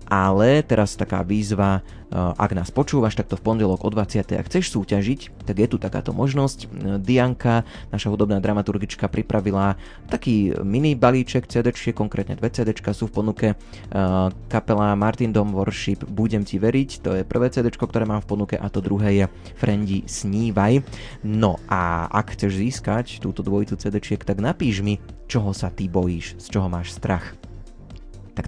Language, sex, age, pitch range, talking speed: Slovak, male, 20-39, 95-110 Hz, 160 wpm